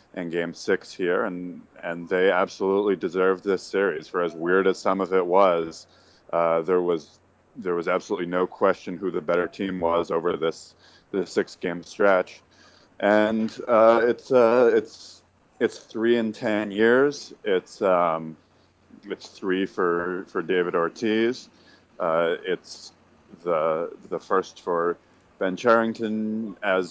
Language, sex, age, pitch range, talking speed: English, male, 30-49, 90-110 Hz, 145 wpm